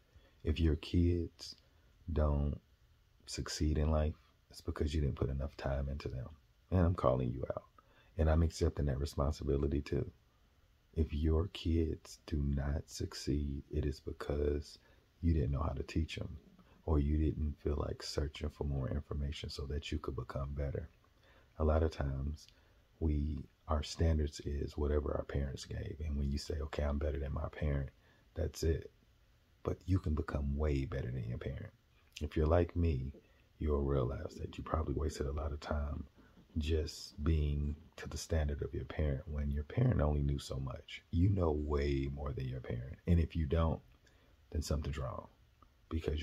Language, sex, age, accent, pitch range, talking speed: English, male, 40-59, American, 70-80 Hz, 175 wpm